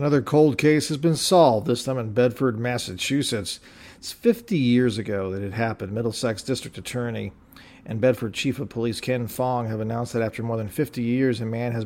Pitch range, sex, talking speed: 115-140 Hz, male, 195 wpm